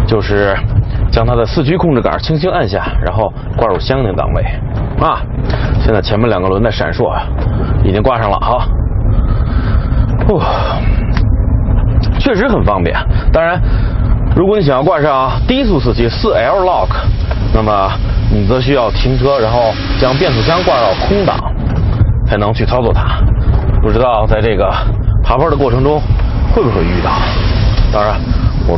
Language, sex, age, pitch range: Chinese, male, 30-49, 100-125 Hz